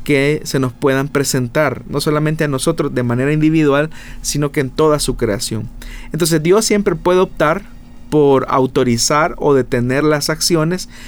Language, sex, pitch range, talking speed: Spanish, male, 130-165 Hz, 155 wpm